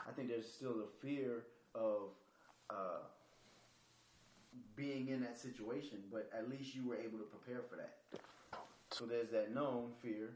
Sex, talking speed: male, 155 wpm